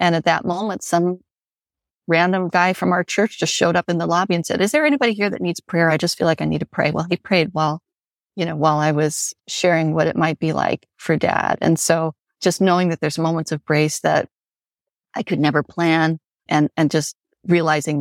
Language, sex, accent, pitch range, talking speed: English, female, American, 155-175 Hz, 225 wpm